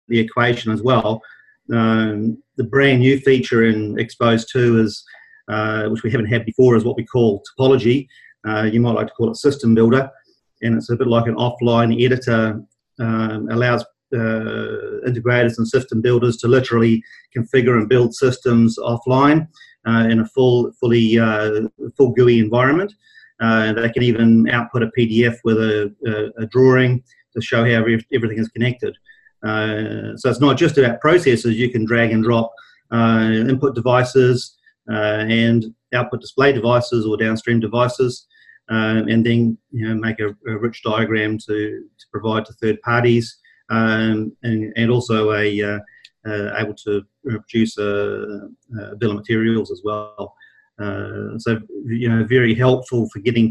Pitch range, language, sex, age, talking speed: 110-125 Hz, English, male, 40-59, 165 wpm